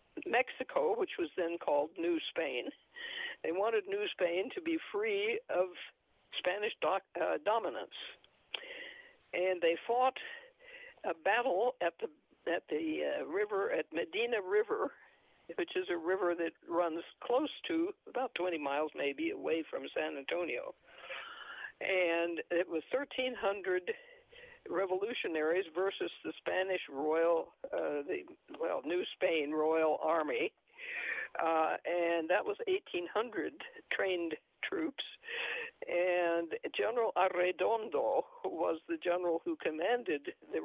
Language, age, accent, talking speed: English, 60-79, American, 120 wpm